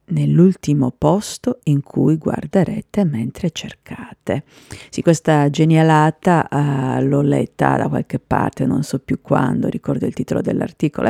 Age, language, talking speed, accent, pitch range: 50-69, Italian, 130 wpm, native, 140-160 Hz